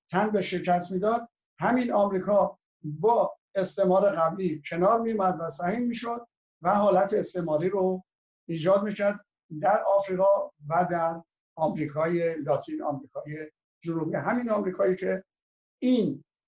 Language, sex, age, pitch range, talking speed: Persian, male, 60-79, 155-195 Hz, 115 wpm